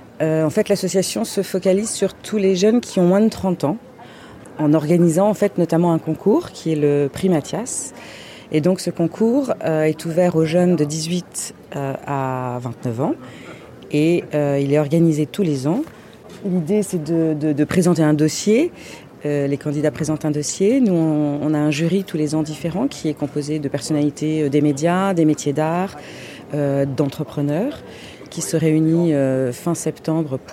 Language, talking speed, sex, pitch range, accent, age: French, 185 wpm, female, 145-175 Hz, French, 30-49